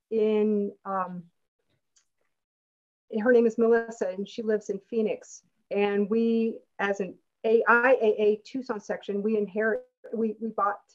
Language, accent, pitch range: English, American, 200-260 Hz